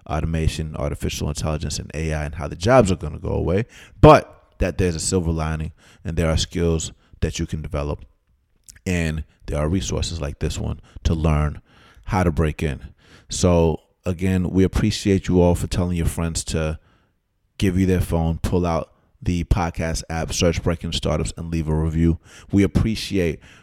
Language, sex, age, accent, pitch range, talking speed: English, male, 30-49, American, 80-95 Hz, 180 wpm